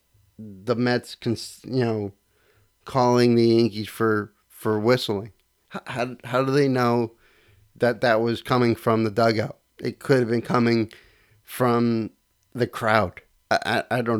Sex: male